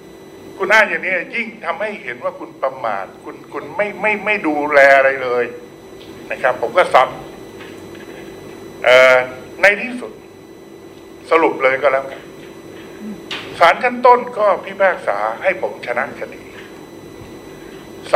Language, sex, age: Thai, male, 60-79